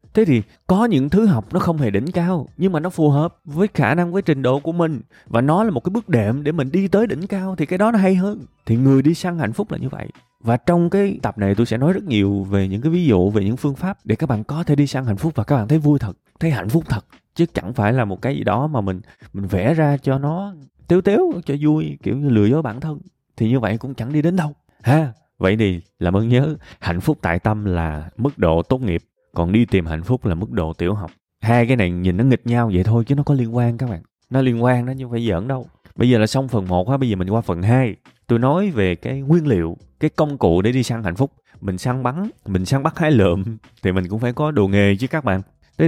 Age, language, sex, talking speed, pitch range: 20-39, Vietnamese, male, 285 wpm, 100-150 Hz